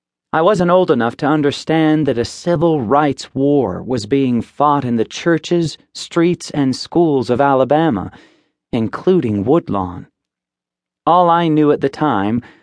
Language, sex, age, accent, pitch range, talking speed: English, male, 40-59, American, 115-150 Hz, 145 wpm